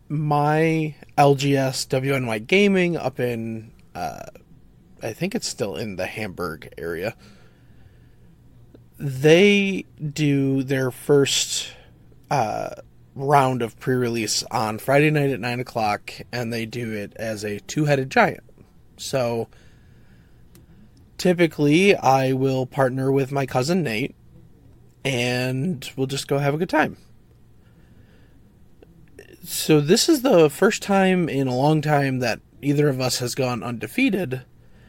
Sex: male